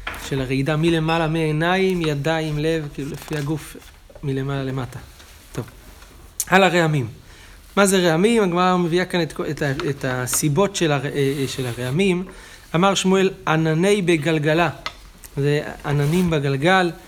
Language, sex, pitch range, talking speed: Hebrew, male, 140-175 Hz, 115 wpm